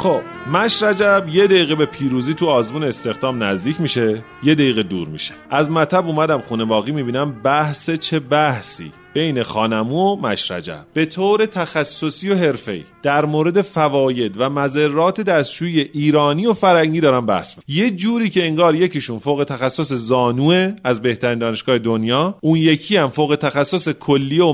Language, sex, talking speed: Persian, male, 155 wpm